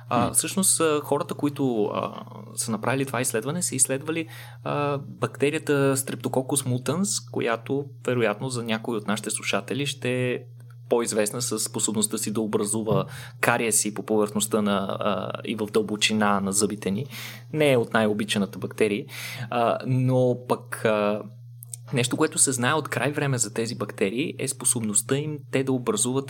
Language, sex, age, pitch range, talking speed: Bulgarian, male, 20-39, 110-135 Hz, 135 wpm